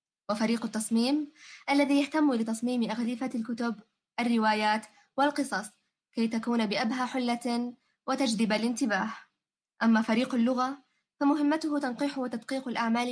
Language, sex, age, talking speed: Arabic, female, 20-39, 100 wpm